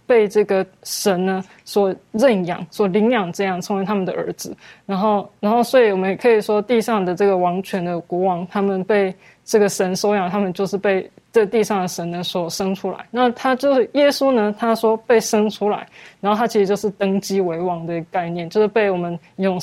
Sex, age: female, 20-39